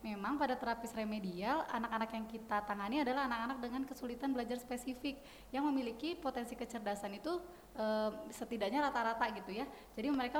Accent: native